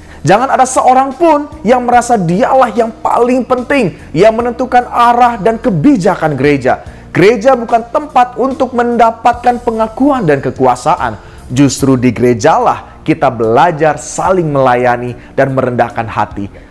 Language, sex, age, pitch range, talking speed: Indonesian, male, 20-39, 120-195 Hz, 120 wpm